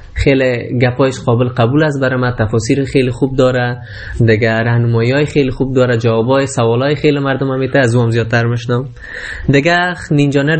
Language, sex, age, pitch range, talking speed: Persian, male, 20-39, 120-160 Hz, 140 wpm